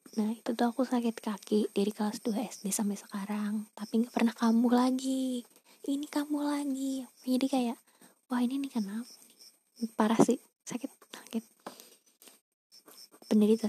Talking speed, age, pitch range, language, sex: 135 wpm, 20-39, 210-250 Hz, Indonesian, female